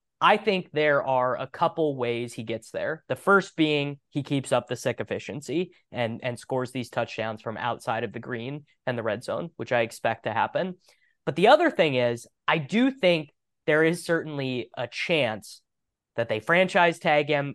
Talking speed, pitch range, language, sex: 190 wpm, 120-150 Hz, English, male